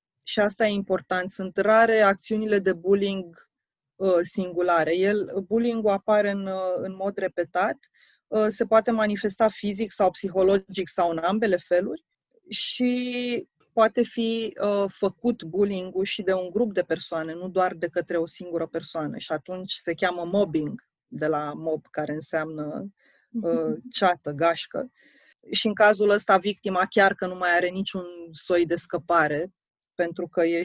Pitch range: 180-215 Hz